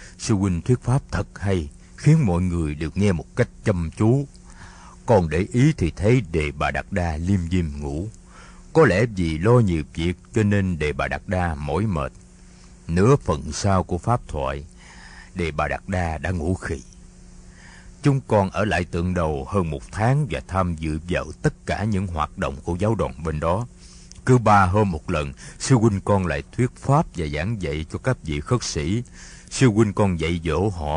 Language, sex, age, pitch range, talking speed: Vietnamese, male, 60-79, 80-110 Hz, 200 wpm